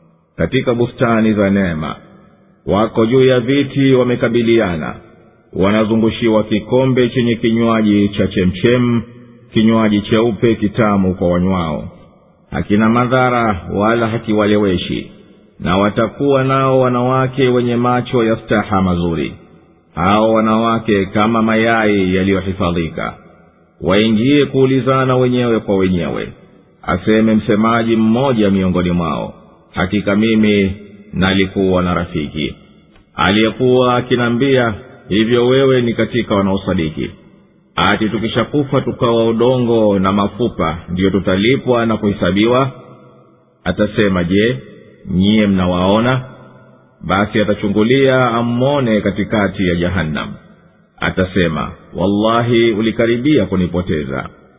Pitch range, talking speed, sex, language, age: 95-120 Hz, 95 wpm, male, Swahili, 50-69